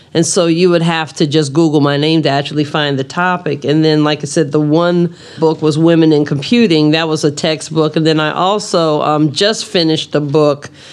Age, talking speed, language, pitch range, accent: 40-59, 220 wpm, English, 150-170 Hz, American